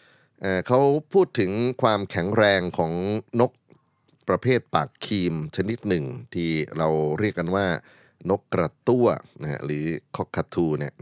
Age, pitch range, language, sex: 30-49, 80-100 Hz, Thai, male